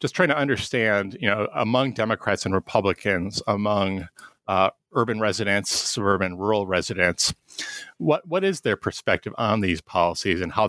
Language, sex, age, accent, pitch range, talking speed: English, male, 30-49, American, 95-115 Hz, 150 wpm